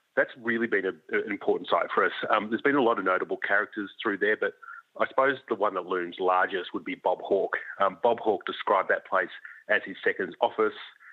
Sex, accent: male, Australian